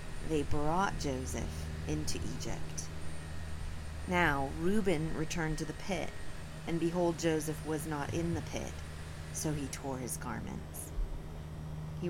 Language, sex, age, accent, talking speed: English, female, 30-49, American, 125 wpm